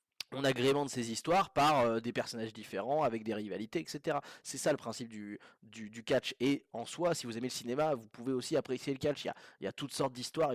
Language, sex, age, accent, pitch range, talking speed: French, male, 20-39, French, 120-155 Hz, 255 wpm